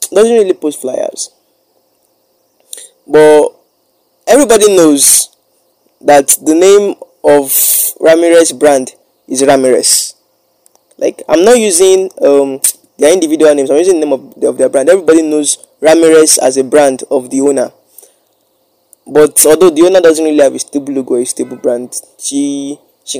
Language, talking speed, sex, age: English, 145 wpm, male, 20-39